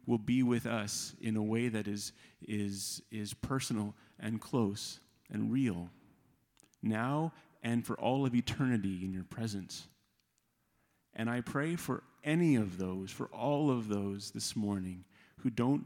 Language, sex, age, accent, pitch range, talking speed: English, male, 40-59, American, 105-130 Hz, 150 wpm